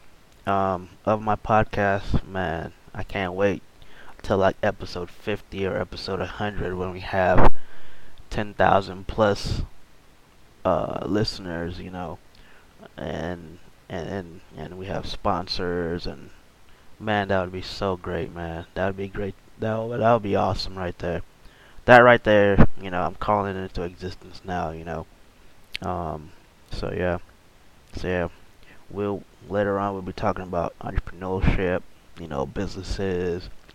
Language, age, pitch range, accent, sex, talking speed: English, 20-39, 90-100 Hz, American, male, 140 wpm